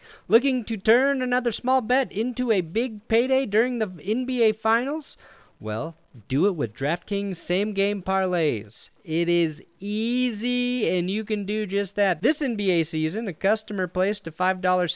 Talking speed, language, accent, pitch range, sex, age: 155 wpm, English, American, 145-220 Hz, male, 30-49